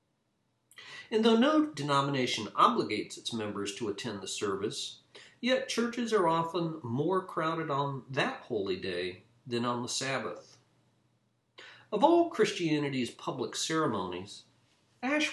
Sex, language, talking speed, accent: male, English, 120 wpm, American